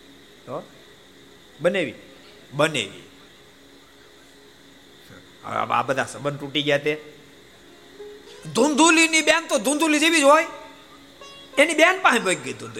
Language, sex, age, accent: Gujarati, male, 50-69, native